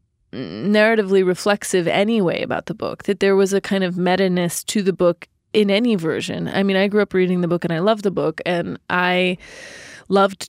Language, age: English, 20-39